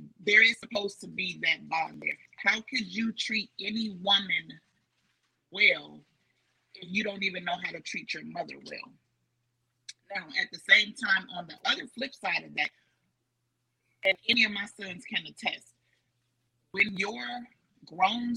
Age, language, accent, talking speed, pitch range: 30-49, English, American, 155 wpm, 125-200 Hz